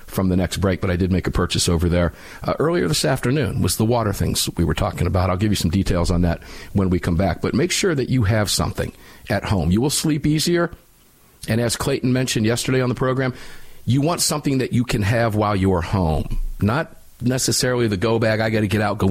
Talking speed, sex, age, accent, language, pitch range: 245 wpm, male, 50-69, American, English, 95-120 Hz